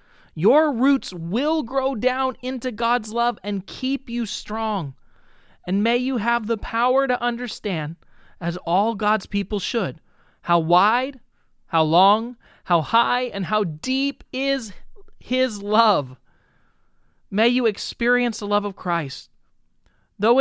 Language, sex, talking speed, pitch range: English, male, 130 wpm, 175-240 Hz